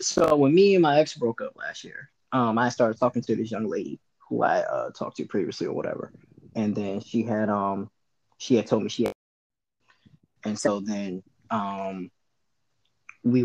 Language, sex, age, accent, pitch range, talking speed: English, male, 20-39, American, 105-135 Hz, 185 wpm